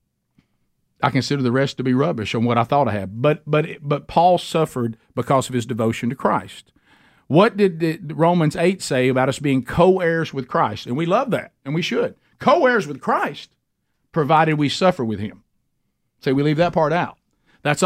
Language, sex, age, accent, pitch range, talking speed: English, male, 50-69, American, 130-180 Hz, 200 wpm